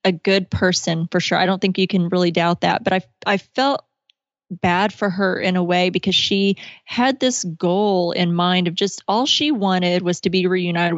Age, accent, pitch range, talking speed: 20-39, American, 175-205 Hz, 215 wpm